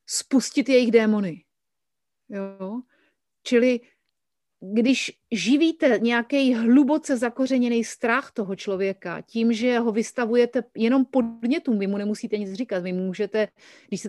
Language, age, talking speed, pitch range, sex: Slovak, 30-49, 125 wpm, 215-250 Hz, female